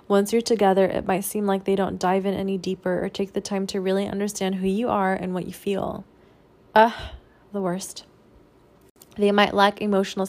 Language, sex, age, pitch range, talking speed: English, female, 20-39, 185-210 Hz, 200 wpm